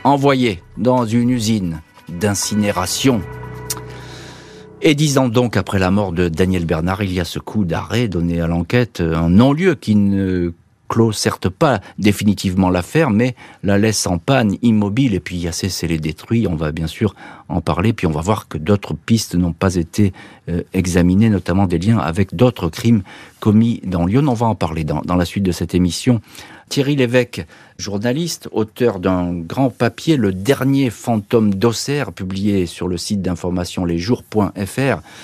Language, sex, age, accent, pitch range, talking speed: French, male, 50-69, French, 90-125 Hz, 170 wpm